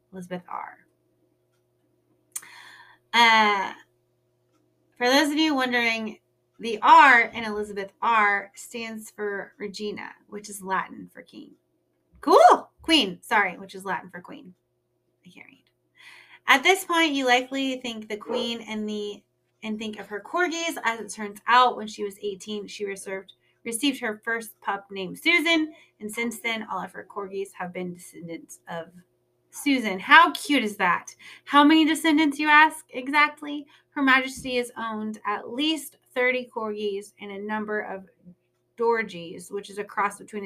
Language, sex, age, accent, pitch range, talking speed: English, female, 30-49, American, 195-260 Hz, 150 wpm